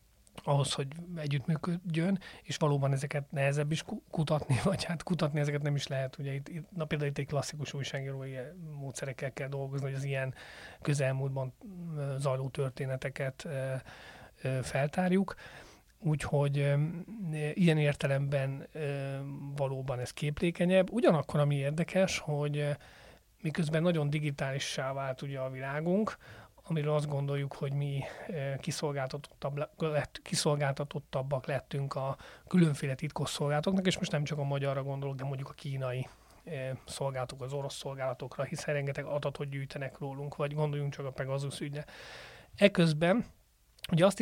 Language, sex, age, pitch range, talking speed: Hungarian, male, 30-49, 135-155 Hz, 120 wpm